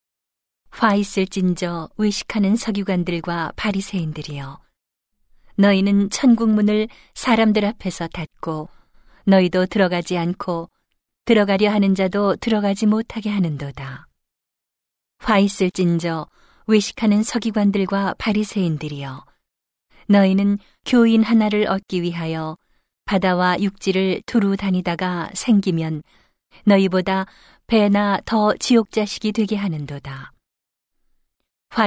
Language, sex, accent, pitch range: Korean, female, native, 170-205 Hz